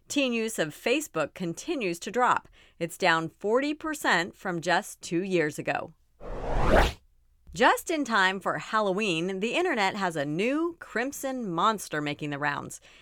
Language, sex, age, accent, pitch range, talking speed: English, female, 40-59, American, 170-245 Hz, 140 wpm